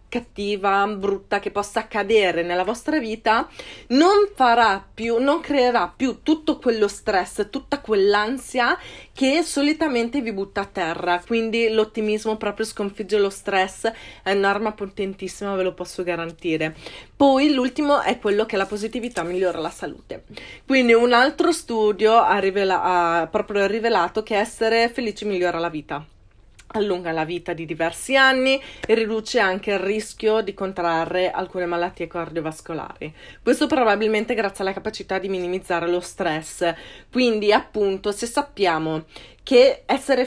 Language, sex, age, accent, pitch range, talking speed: Italian, female, 30-49, native, 190-240 Hz, 140 wpm